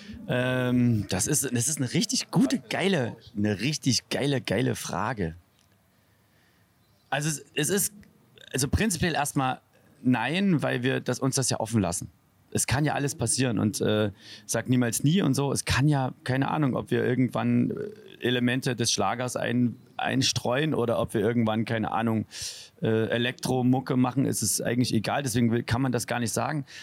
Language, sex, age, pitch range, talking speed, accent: German, male, 30-49, 115-145 Hz, 165 wpm, German